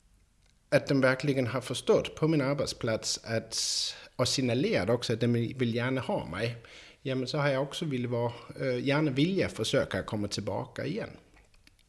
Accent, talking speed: Danish, 155 wpm